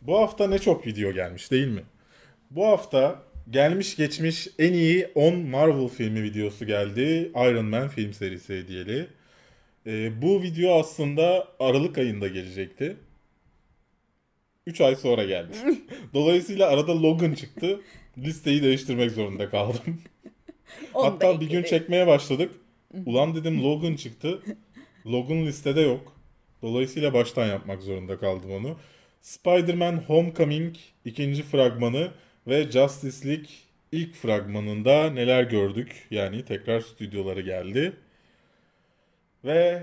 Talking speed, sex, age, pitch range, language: 115 wpm, male, 30-49, 110-160 Hz, Turkish